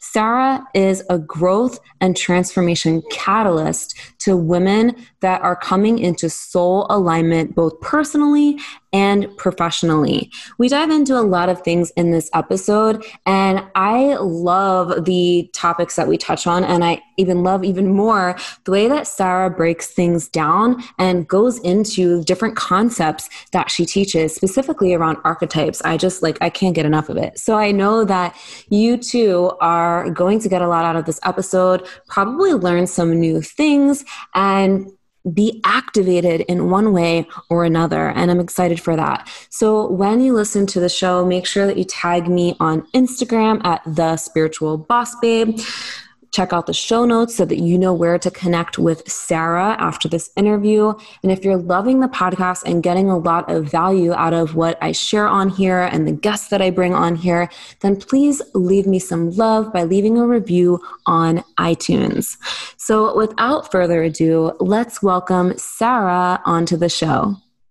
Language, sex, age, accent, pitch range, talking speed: English, female, 20-39, American, 170-215 Hz, 170 wpm